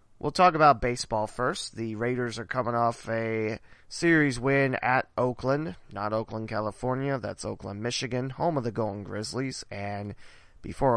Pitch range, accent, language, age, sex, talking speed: 110-135 Hz, American, English, 30-49, male, 155 wpm